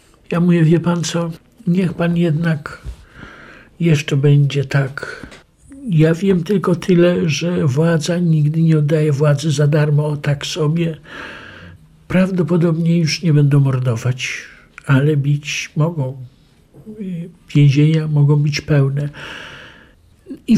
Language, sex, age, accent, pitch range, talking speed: Polish, male, 60-79, native, 155-205 Hz, 115 wpm